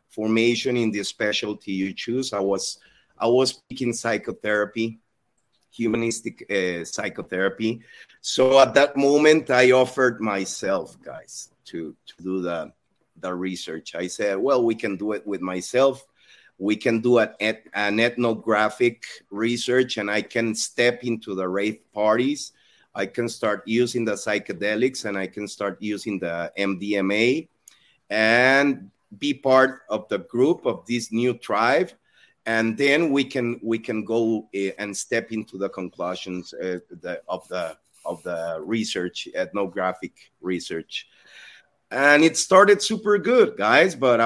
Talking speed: 140 wpm